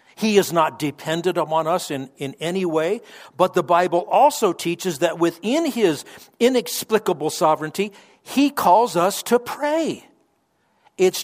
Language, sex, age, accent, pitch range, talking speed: English, male, 50-69, American, 160-220 Hz, 140 wpm